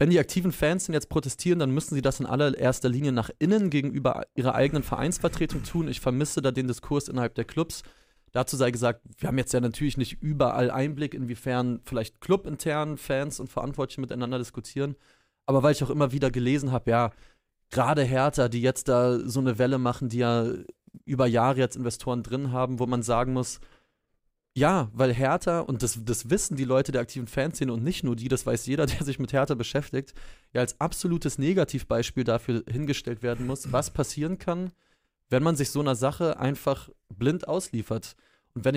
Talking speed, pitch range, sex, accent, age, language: 190 wpm, 125-150 Hz, male, German, 30-49, German